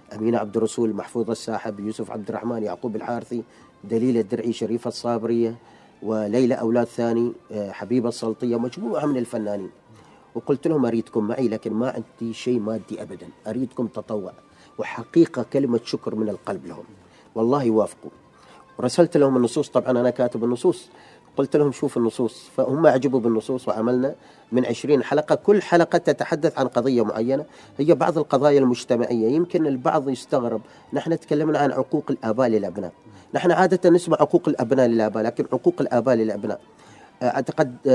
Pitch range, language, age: 115-145 Hz, Arabic, 40-59